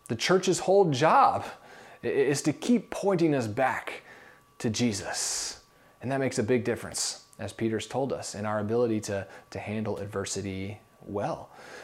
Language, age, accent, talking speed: English, 30-49, American, 150 wpm